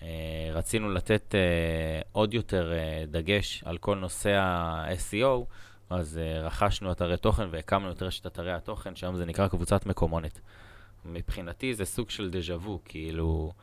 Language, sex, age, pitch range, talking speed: Hebrew, male, 20-39, 90-105 Hz, 145 wpm